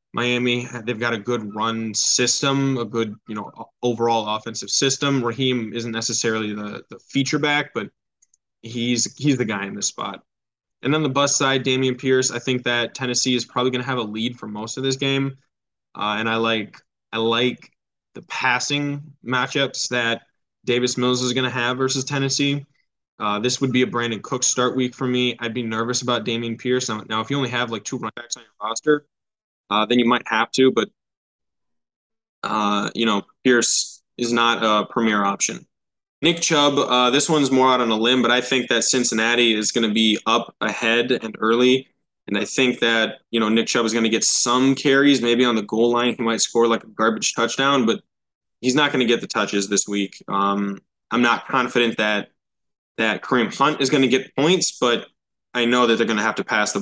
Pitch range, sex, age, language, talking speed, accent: 110-130 Hz, male, 10-29, English, 210 wpm, American